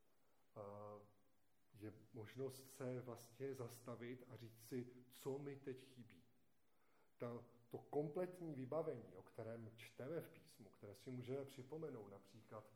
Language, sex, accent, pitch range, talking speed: Czech, male, native, 120-145 Hz, 120 wpm